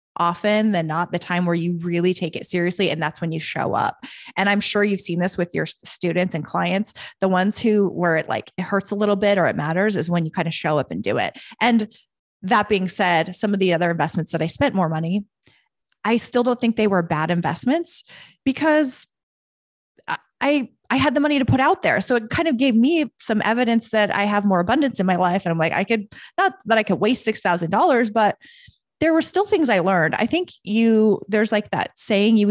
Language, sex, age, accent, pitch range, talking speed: English, female, 20-39, American, 170-220 Hz, 230 wpm